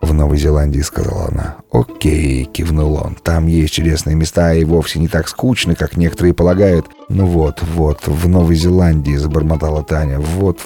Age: 30-49